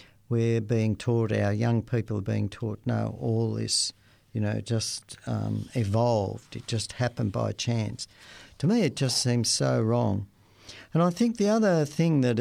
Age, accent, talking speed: 50-69, Australian, 175 wpm